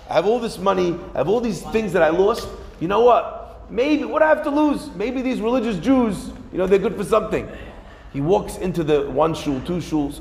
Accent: American